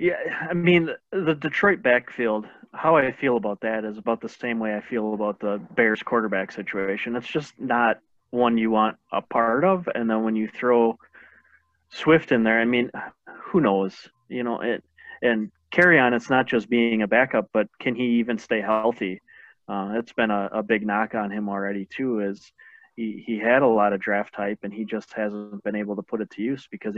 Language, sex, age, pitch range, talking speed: English, male, 30-49, 105-130 Hz, 205 wpm